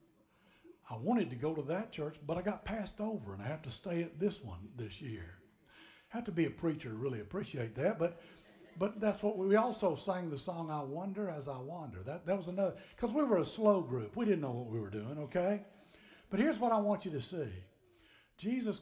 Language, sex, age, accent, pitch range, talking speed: English, male, 60-79, American, 125-195 Hz, 230 wpm